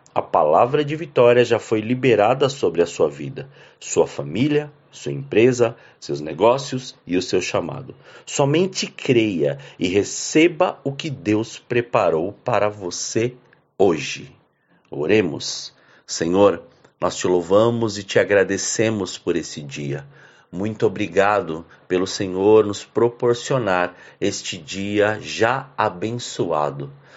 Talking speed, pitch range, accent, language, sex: 115 wpm, 105-145 Hz, Brazilian, Portuguese, male